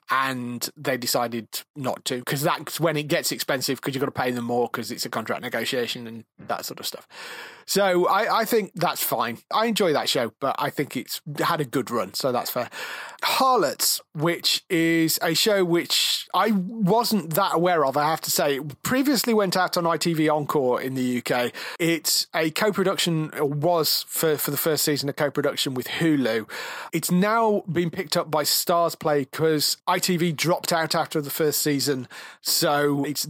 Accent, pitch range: British, 130-170 Hz